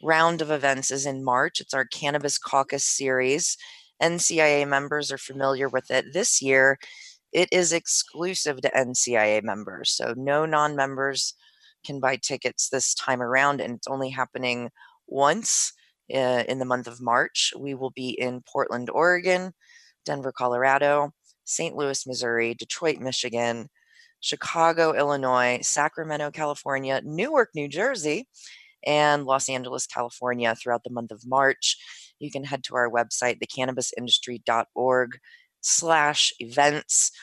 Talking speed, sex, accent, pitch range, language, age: 130 wpm, female, American, 125-150 Hz, English, 20-39